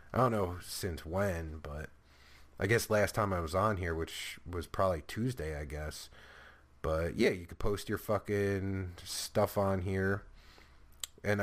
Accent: American